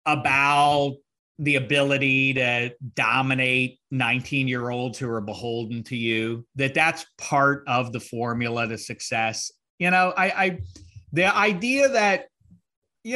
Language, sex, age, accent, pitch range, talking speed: English, male, 40-59, American, 115-150 Hz, 130 wpm